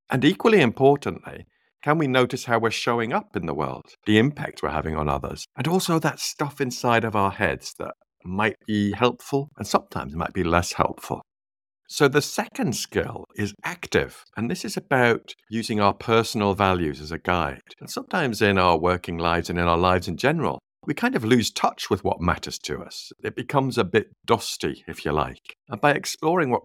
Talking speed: 200 wpm